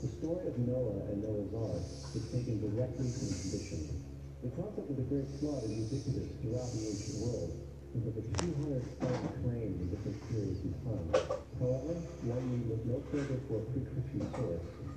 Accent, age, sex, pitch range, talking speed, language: American, 50-69, male, 100-135 Hz, 180 wpm, English